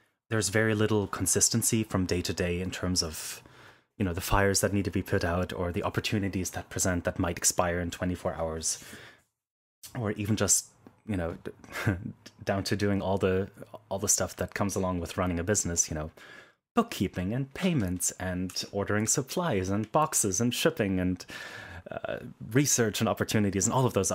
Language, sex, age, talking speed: English, male, 30-49, 180 wpm